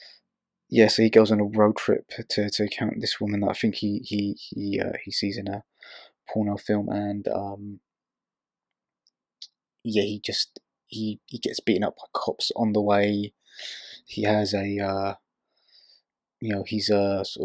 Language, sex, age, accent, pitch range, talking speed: English, male, 20-39, British, 100-110 Hz, 175 wpm